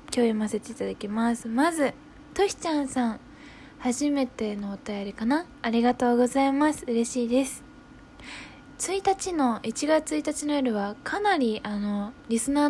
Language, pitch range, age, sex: Japanese, 220-285 Hz, 10-29, female